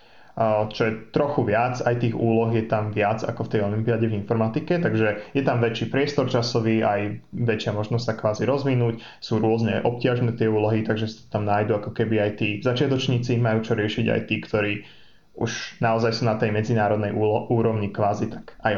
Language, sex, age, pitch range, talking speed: Slovak, male, 20-39, 105-120 Hz, 185 wpm